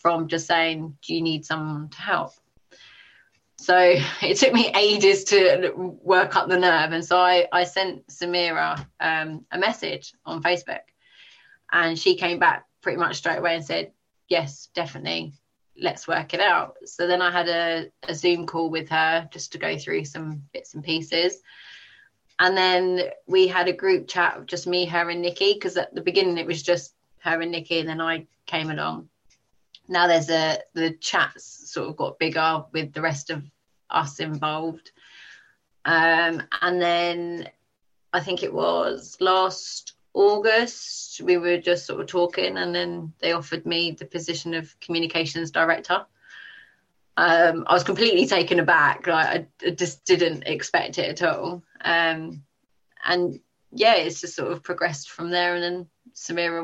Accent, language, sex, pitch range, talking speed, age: British, English, female, 165-180 Hz, 165 wpm, 20-39